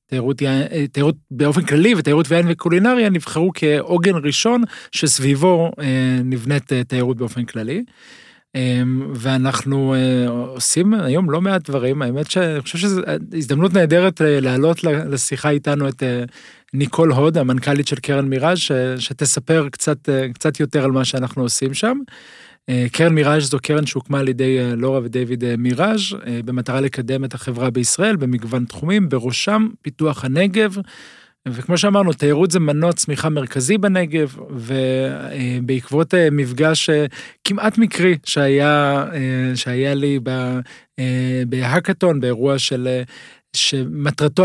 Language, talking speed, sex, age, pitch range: Hebrew, 115 wpm, male, 40-59, 130-165 Hz